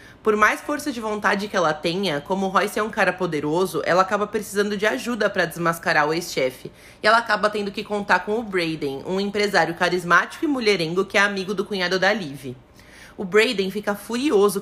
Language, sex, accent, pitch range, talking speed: Portuguese, female, Brazilian, 180-215 Hz, 200 wpm